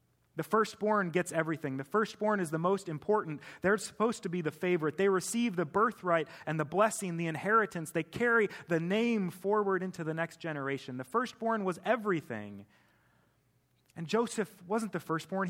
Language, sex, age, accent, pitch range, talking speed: English, male, 30-49, American, 130-180 Hz, 165 wpm